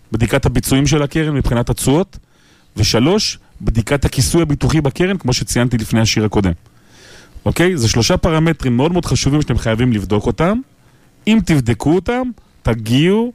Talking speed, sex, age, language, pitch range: 140 wpm, male, 30-49, Hebrew, 110-150 Hz